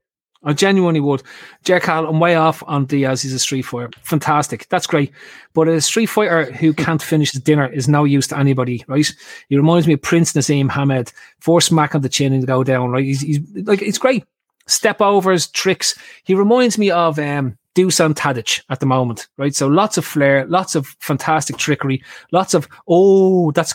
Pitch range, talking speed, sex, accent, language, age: 140-190 Hz, 195 wpm, male, Irish, English, 30-49